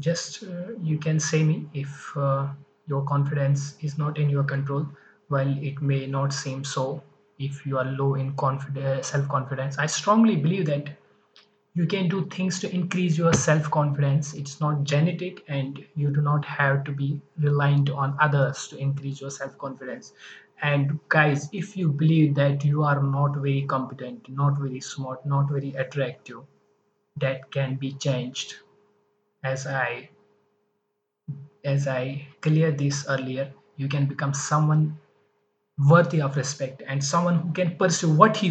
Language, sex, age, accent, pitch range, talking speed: English, male, 20-39, Indian, 140-160 Hz, 155 wpm